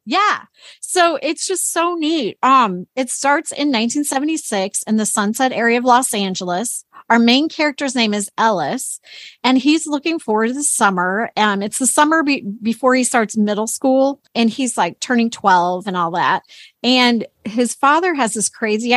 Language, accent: English, American